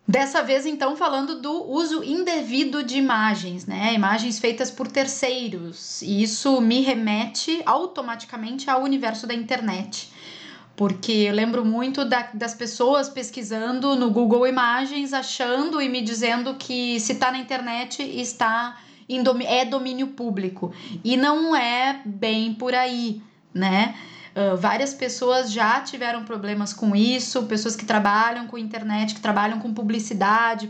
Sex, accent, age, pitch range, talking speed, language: female, Brazilian, 10-29, 220-260 Hz, 145 wpm, Portuguese